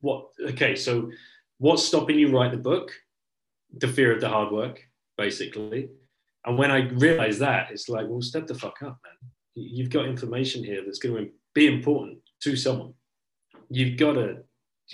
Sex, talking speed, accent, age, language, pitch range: male, 175 wpm, British, 30-49, English, 105-140 Hz